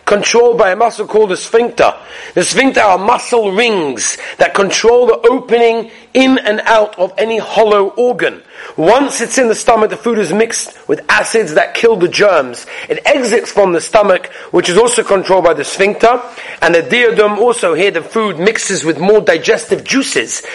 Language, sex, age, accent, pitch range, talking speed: English, male, 40-59, British, 185-235 Hz, 180 wpm